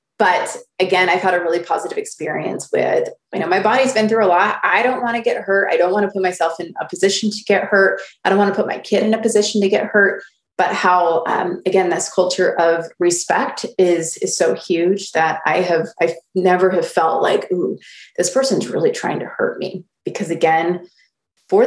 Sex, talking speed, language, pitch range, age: female, 220 wpm, English, 175-215 Hz, 20-39